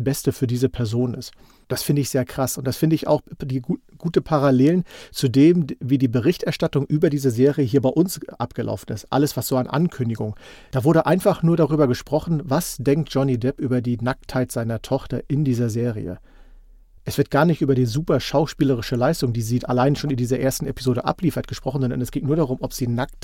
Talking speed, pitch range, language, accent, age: 210 wpm, 125-150 Hz, German, German, 40-59